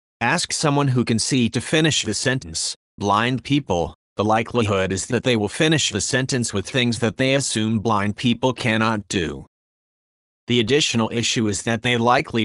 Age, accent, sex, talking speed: 30-49, American, male, 175 wpm